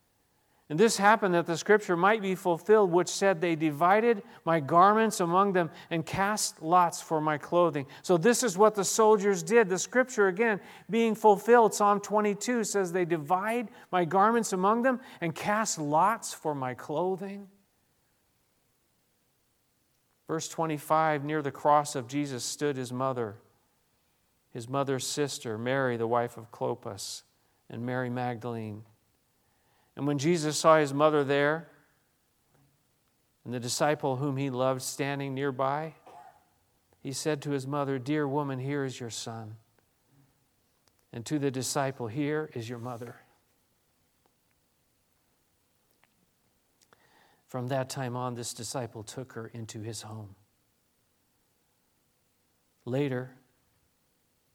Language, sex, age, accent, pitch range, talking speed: English, male, 40-59, American, 125-180 Hz, 130 wpm